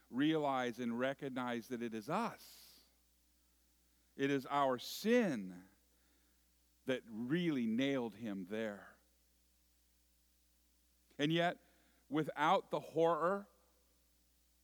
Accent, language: American, English